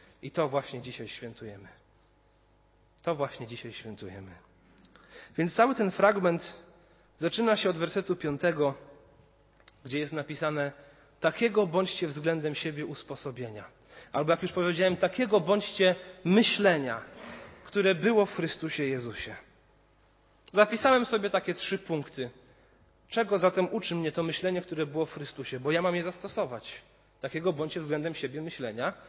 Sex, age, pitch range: male, 30-49, 140-185 Hz